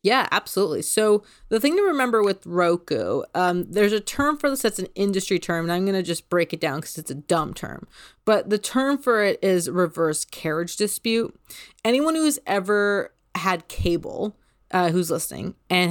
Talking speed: 190 wpm